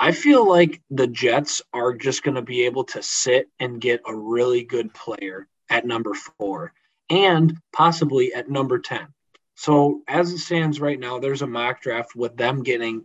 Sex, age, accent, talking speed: male, 20-39, American, 185 wpm